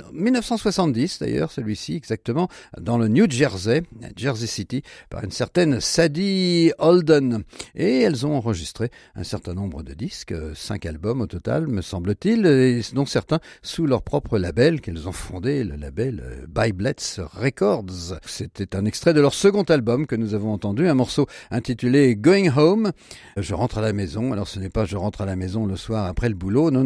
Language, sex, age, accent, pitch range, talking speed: French, male, 50-69, French, 100-145 Hz, 180 wpm